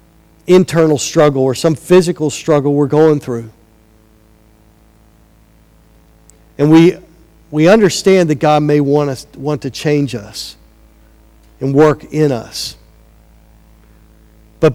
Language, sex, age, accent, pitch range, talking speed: English, male, 50-69, American, 110-155 Hz, 110 wpm